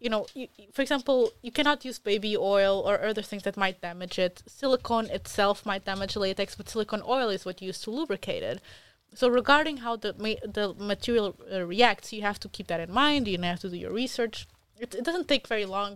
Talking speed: 225 wpm